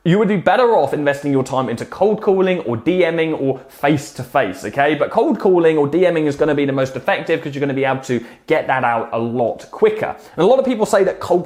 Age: 20-39